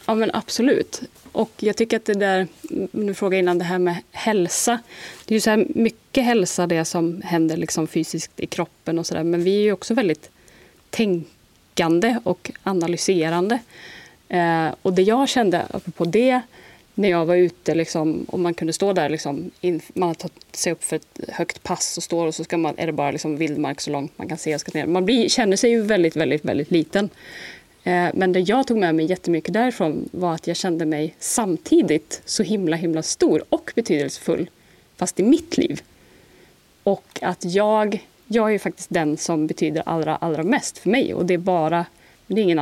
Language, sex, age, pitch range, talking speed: Swedish, female, 30-49, 165-210 Hz, 200 wpm